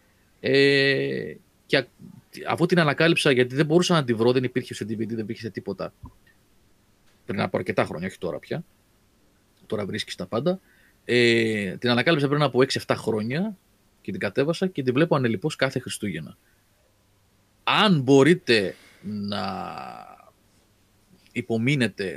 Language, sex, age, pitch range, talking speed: Greek, male, 30-49, 105-150 Hz, 125 wpm